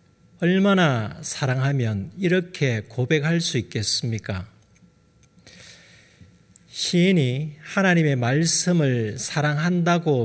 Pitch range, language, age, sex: 120-165 Hz, Korean, 40-59, male